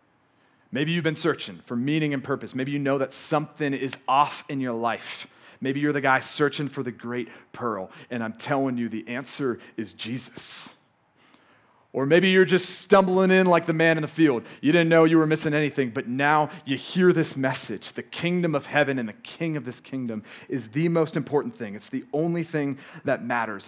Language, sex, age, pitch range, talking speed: English, male, 30-49, 130-165 Hz, 205 wpm